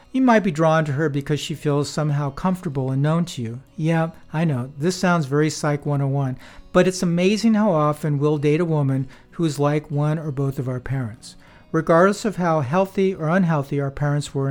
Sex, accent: male, American